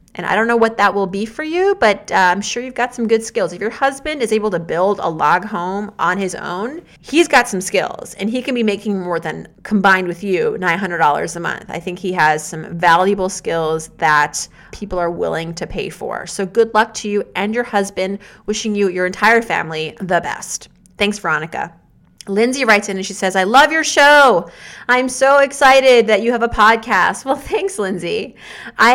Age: 30-49